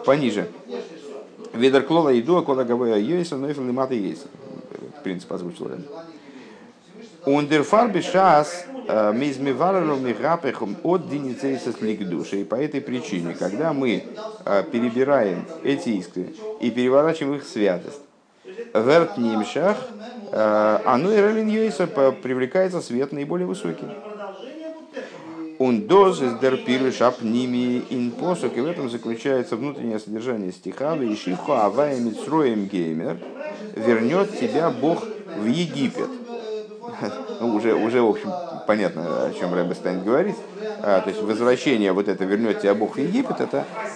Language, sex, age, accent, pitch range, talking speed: Russian, male, 50-69, native, 110-175 Hz, 110 wpm